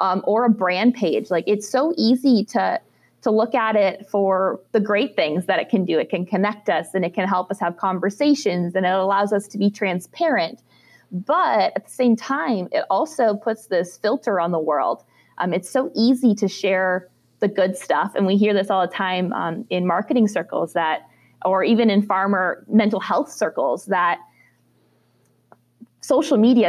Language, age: English, 20-39